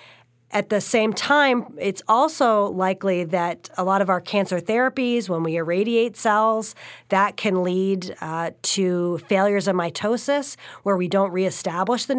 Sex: female